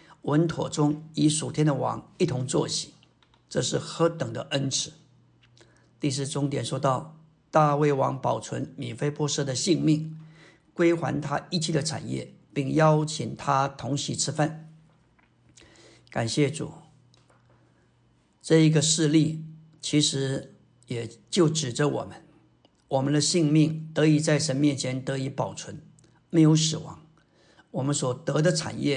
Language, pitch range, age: Chinese, 135-160 Hz, 50-69